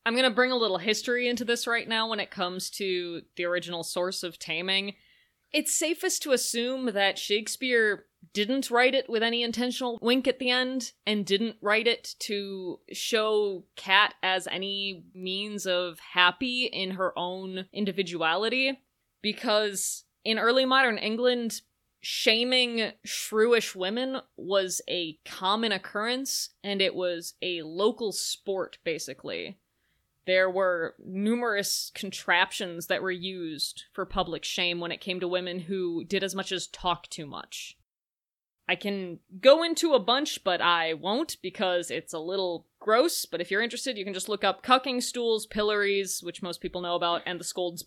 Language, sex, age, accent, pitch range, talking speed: English, female, 20-39, American, 180-230 Hz, 160 wpm